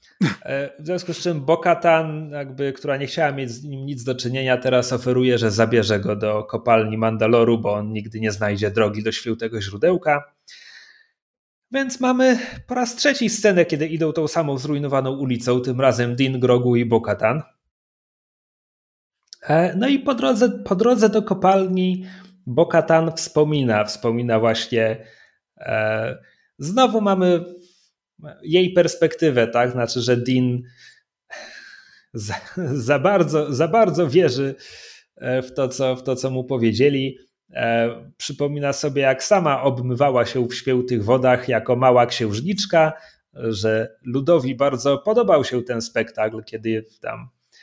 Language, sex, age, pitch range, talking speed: Polish, male, 30-49, 115-165 Hz, 130 wpm